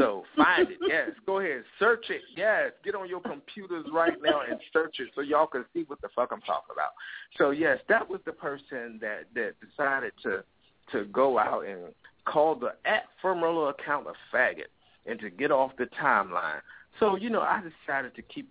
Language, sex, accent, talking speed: English, male, American, 200 wpm